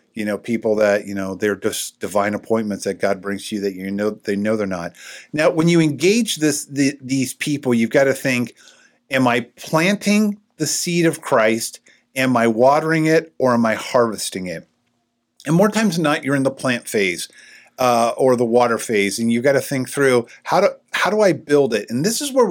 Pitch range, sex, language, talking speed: 115-145 Hz, male, English, 220 wpm